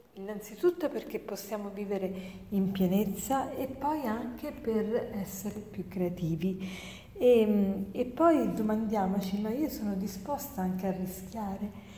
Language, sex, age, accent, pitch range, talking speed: Italian, female, 40-59, native, 200-235 Hz, 120 wpm